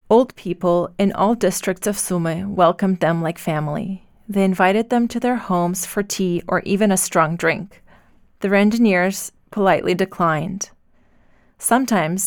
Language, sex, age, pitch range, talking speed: Ukrainian, female, 20-39, 175-205 Hz, 140 wpm